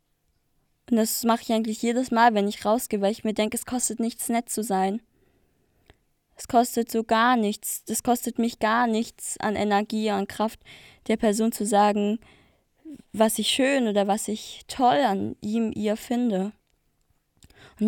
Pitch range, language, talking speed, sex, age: 205-230 Hz, German, 170 wpm, female, 20-39